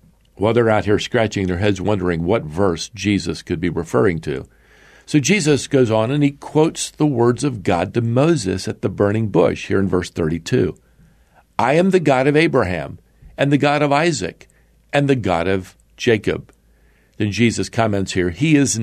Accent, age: American, 50-69